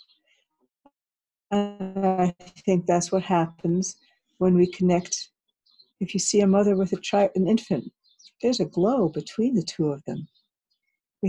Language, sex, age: English, female, 60-79